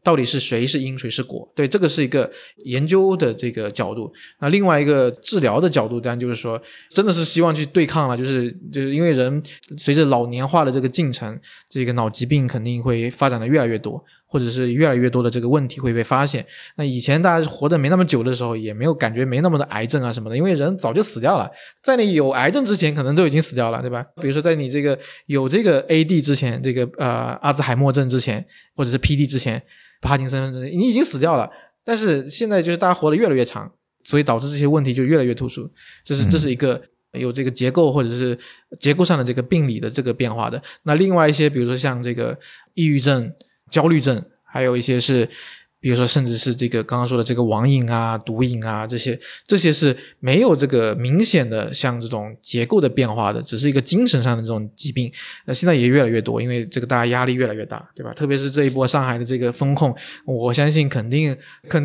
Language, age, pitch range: Chinese, 20-39, 125-155 Hz